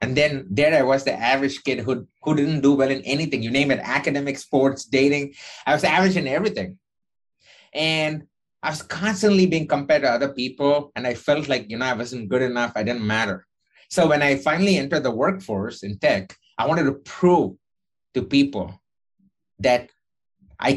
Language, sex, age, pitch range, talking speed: English, male, 30-49, 120-150 Hz, 190 wpm